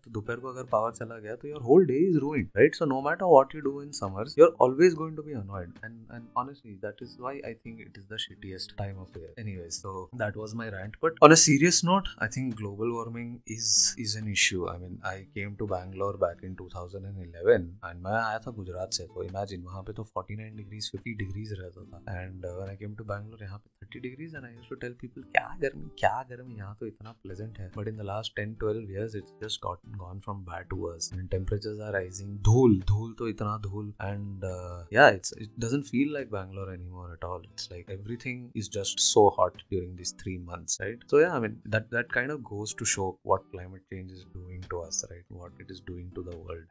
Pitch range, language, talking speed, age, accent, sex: 95-115 Hz, English, 215 wpm, 20-39, Indian, male